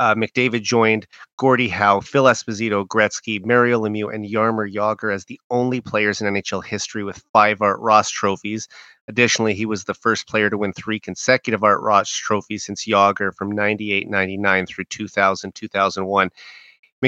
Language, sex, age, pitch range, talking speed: English, male, 30-49, 100-115 Hz, 160 wpm